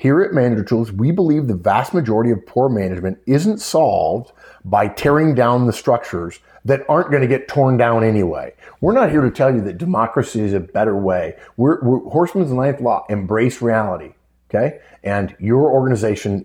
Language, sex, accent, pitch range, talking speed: English, male, American, 105-145 Hz, 180 wpm